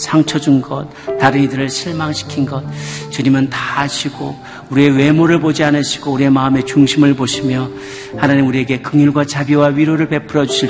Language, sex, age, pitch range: Korean, male, 40-59, 110-145 Hz